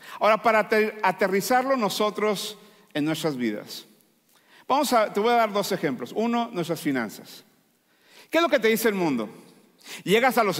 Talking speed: 165 wpm